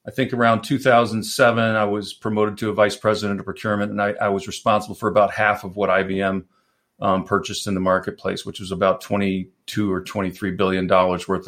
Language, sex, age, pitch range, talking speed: English, male, 40-59, 100-125 Hz, 200 wpm